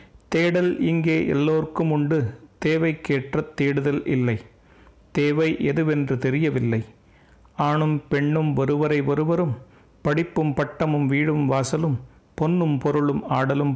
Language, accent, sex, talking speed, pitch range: Tamil, native, male, 90 wpm, 130-155 Hz